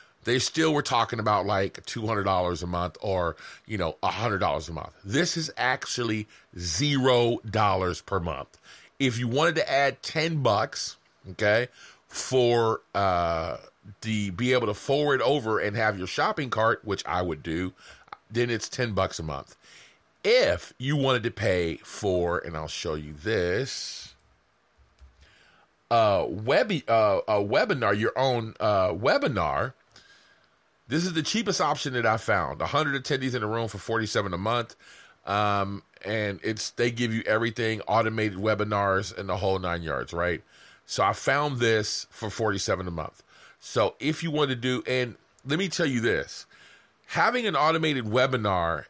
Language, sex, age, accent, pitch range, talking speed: English, male, 30-49, American, 100-130 Hz, 155 wpm